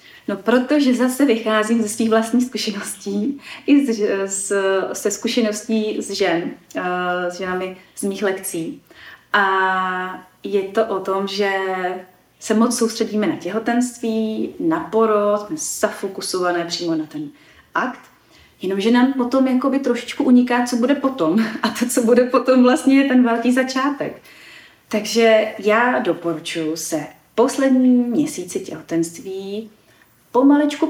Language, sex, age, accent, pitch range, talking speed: Czech, female, 30-49, native, 185-245 Hz, 130 wpm